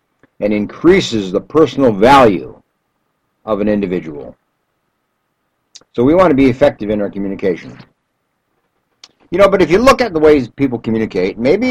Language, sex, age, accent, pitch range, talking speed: English, male, 60-79, American, 110-150 Hz, 150 wpm